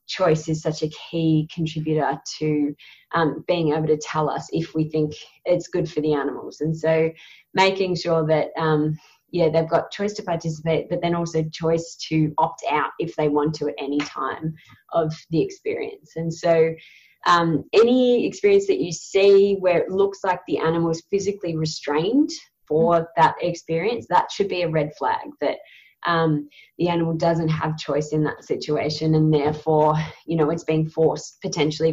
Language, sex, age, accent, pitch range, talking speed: English, female, 20-39, Australian, 155-175 Hz, 175 wpm